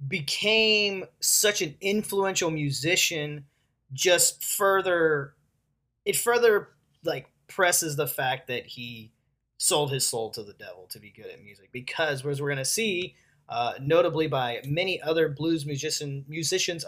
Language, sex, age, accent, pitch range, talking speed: English, male, 20-39, American, 140-185 Hz, 140 wpm